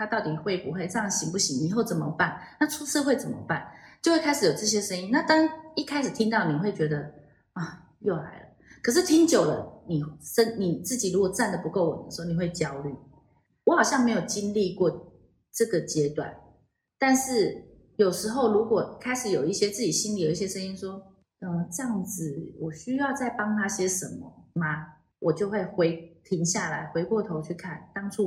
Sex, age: female, 20-39